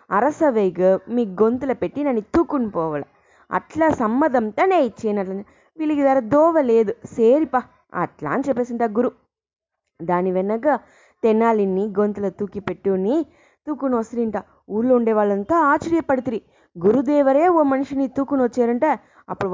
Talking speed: 115 wpm